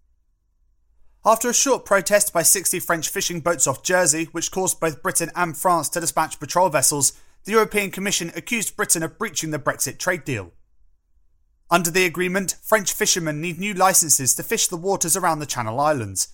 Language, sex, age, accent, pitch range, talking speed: English, male, 30-49, British, 140-195 Hz, 175 wpm